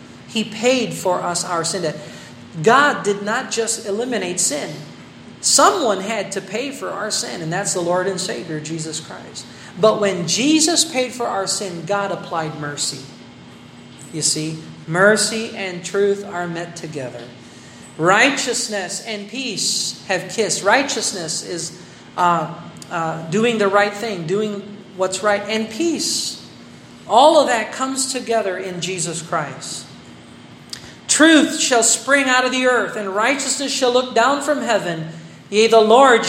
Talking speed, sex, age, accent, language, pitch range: 145 wpm, male, 40-59, American, Filipino, 170-230 Hz